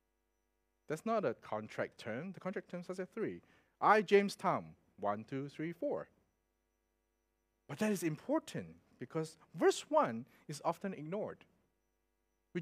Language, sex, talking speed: English, male, 140 wpm